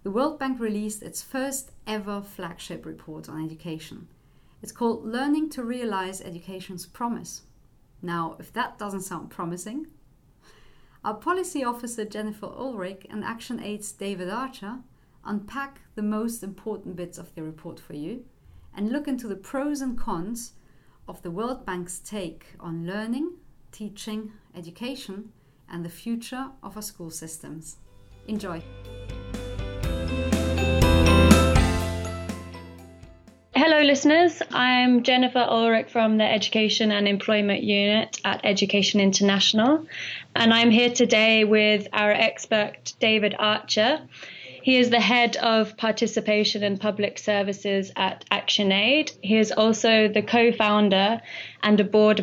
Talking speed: 125 wpm